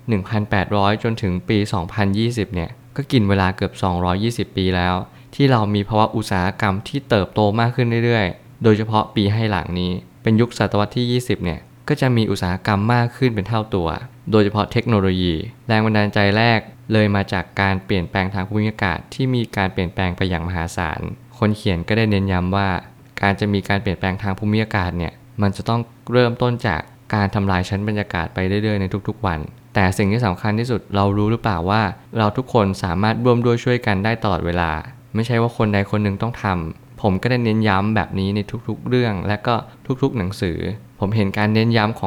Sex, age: male, 20-39